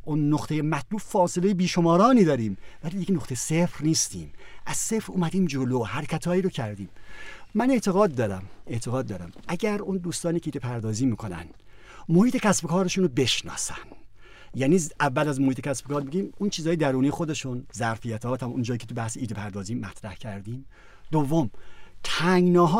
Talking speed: 160 wpm